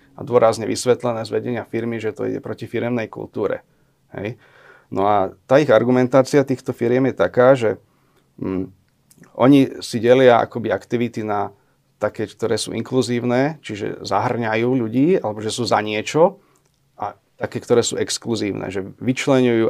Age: 30-49